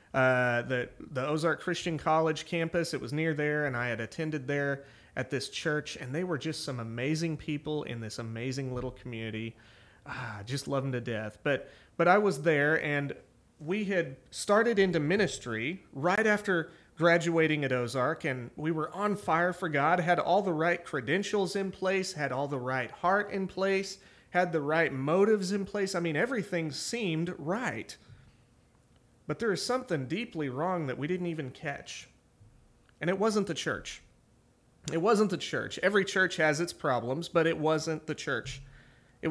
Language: English